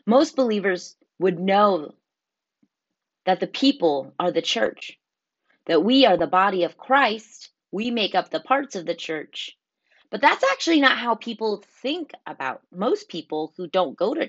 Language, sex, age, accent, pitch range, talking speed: English, female, 30-49, American, 165-225 Hz, 165 wpm